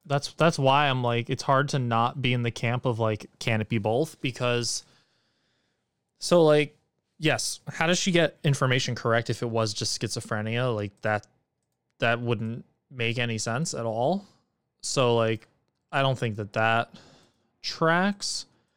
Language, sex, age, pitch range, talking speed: English, male, 20-39, 120-155 Hz, 165 wpm